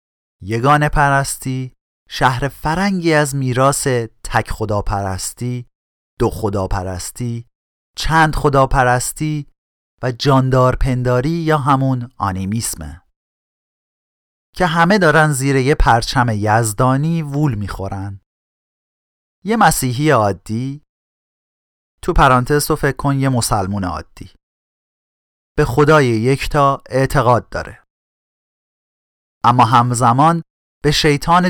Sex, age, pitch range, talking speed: male, 40-59, 105-145 Hz, 85 wpm